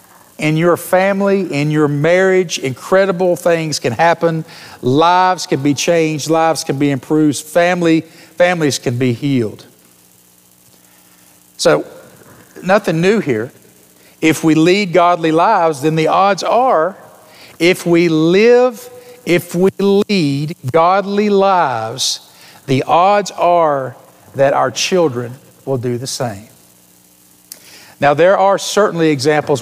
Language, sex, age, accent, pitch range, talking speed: English, male, 50-69, American, 130-175 Hz, 120 wpm